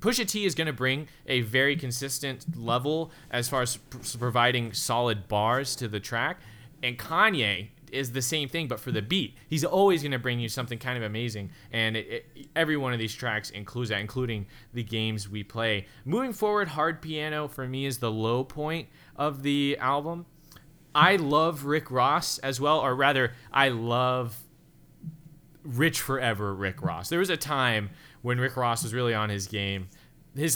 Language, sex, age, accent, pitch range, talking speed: English, male, 20-39, American, 105-150 Hz, 180 wpm